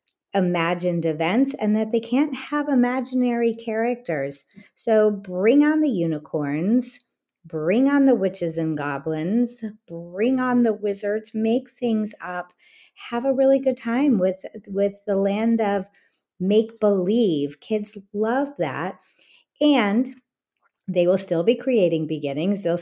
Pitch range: 175-240 Hz